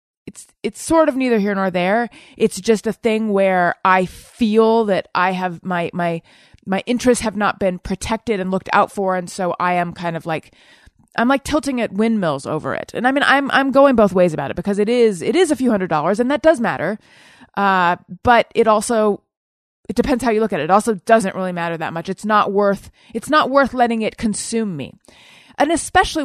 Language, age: English, 30-49